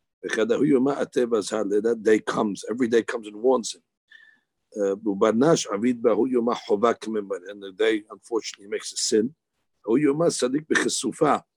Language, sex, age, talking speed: English, male, 50-69, 90 wpm